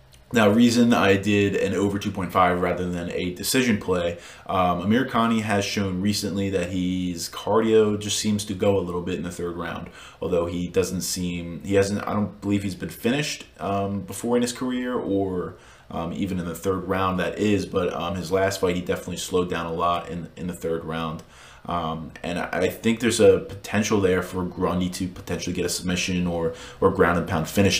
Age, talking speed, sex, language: 20-39, 205 wpm, male, English